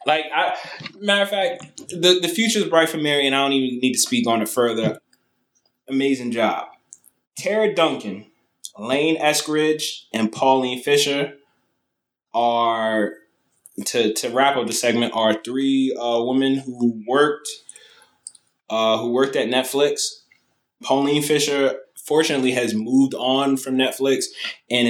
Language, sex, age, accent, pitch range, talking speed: English, male, 20-39, American, 120-145 Hz, 140 wpm